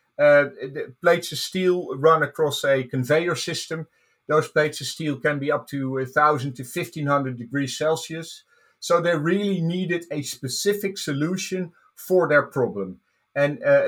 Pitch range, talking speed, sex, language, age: 140-175 Hz, 145 wpm, male, English, 50-69